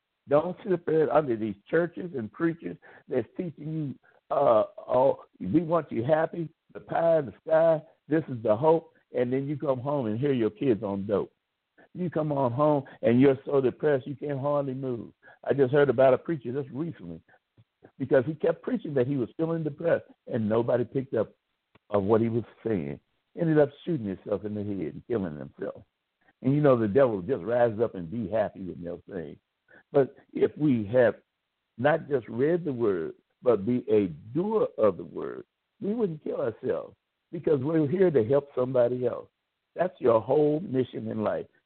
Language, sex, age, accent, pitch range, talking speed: English, male, 60-79, American, 125-160 Hz, 190 wpm